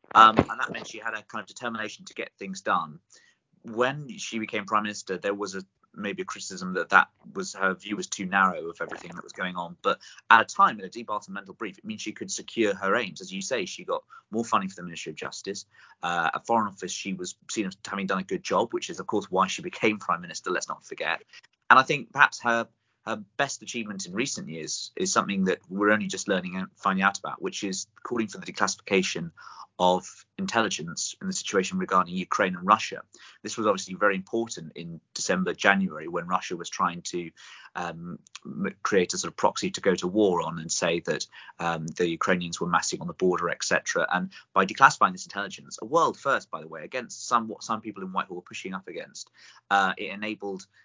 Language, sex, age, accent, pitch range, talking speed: English, male, 30-49, British, 95-110 Hz, 225 wpm